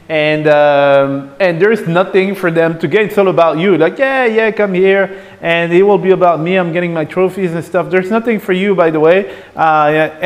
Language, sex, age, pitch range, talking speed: English, male, 30-49, 155-220 Hz, 220 wpm